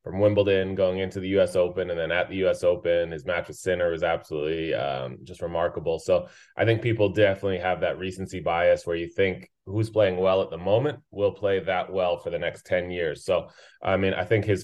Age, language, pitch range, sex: 20-39, English, 90-110 Hz, male